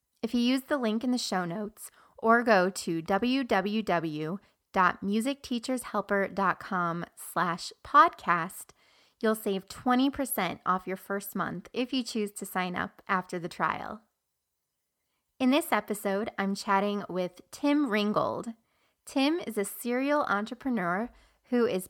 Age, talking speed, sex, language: 20-39, 125 wpm, female, English